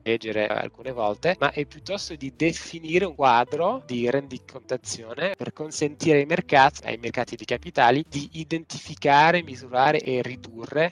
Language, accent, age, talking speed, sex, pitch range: Italian, native, 20-39, 135 wpm, male, 115-145 Hz